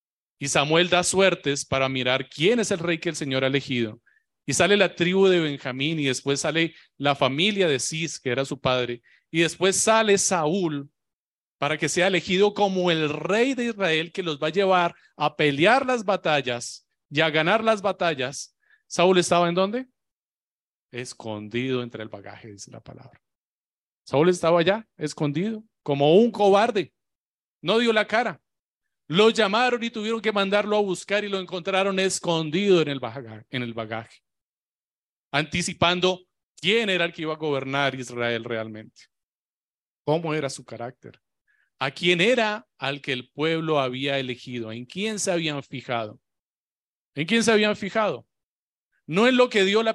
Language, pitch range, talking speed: Spanish, 135-195 Hz, 165 wpm